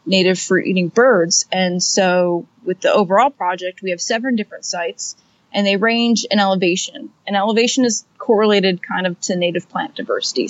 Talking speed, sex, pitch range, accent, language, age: 170 wpm, female, 185-220 Hz, American, English, 30-49